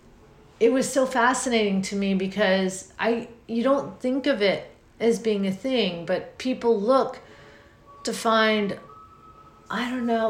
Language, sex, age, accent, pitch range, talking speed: English, female, 40-59, American, 175-220 Hz, 145 wpm